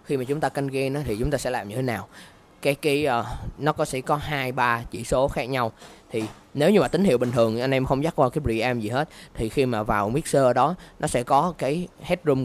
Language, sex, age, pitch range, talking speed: Vietnamese, male, 20-39, 105-135 Hz, 270 wpm